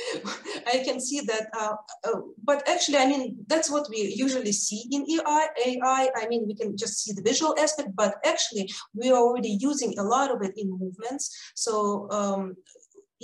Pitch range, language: 195-230 Hz, English